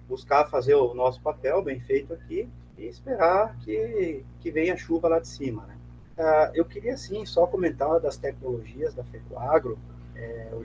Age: 30-49